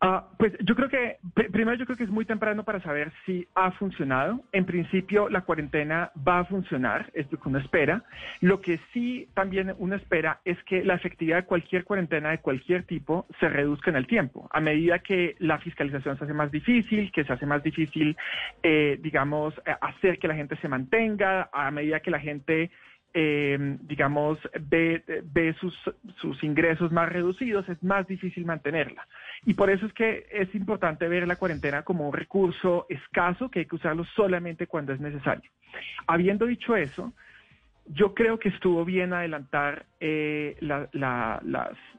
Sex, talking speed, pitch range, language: male, 180 wpm, 155-195 Hz, Spanish